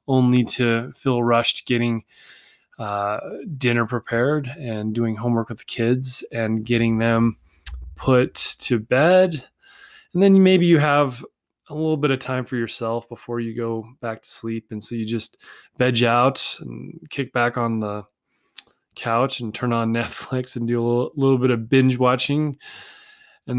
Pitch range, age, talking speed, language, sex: 115-145 Hz, 20-39, 165 wpm, English, male